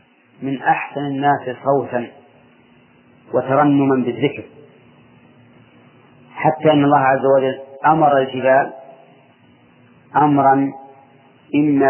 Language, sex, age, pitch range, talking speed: Arabic, male, 40-59, 130-155 Hz, 75 wpm